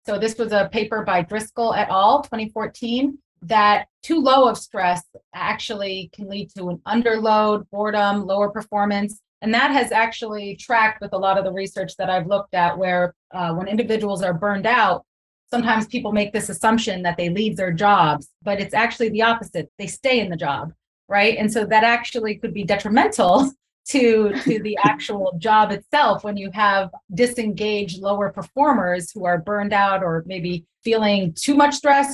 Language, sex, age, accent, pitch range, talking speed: English, female, 30-49, American, 185-225 Hz, 180 wpm